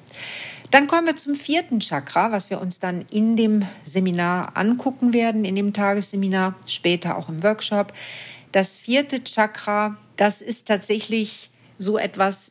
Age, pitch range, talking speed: 50-69, 180-215 Hz, 145 wpm